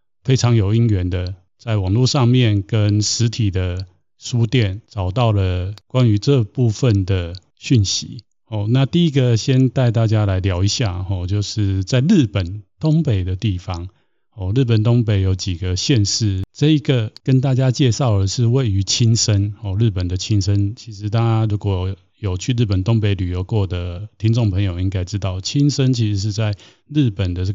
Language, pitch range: Chinese, 95-120 Hz